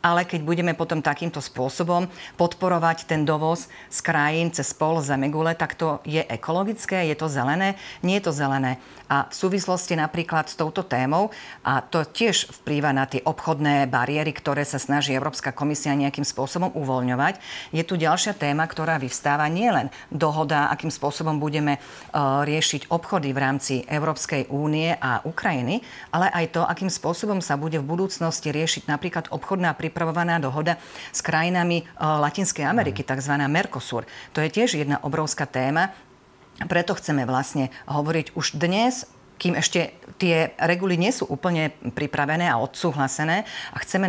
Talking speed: 150 wpm